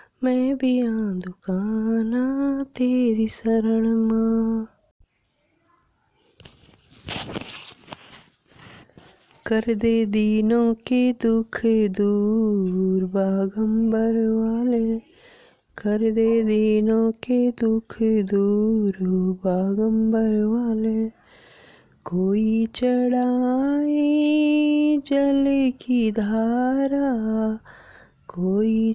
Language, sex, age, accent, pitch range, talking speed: Hindi, female, 20-39, native, 210-245 Hz, 60 wpm